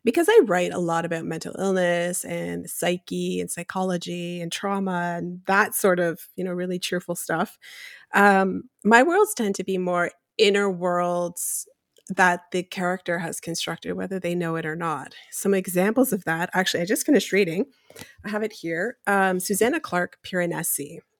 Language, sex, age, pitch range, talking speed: English, female, 30-49, 175-215 Hz, 170 wpm